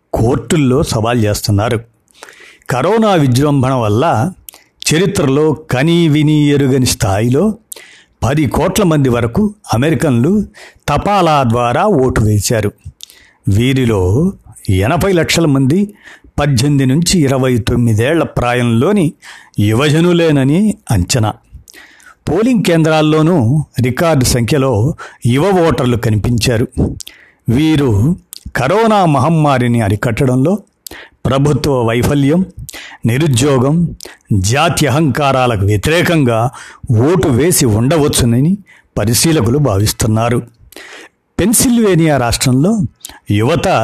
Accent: native